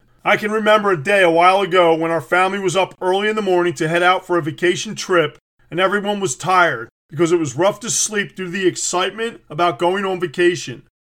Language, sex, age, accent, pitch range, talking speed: English, male, 40-59, American, 165-200 Hz, 220 wpm